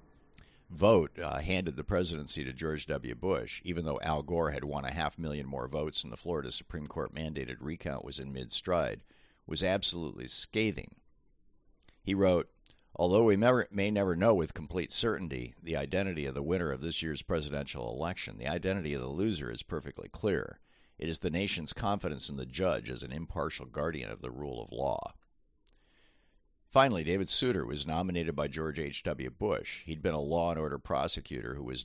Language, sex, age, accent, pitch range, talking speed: English, male, 50-69, American, 70-90 Hz, 175 wpm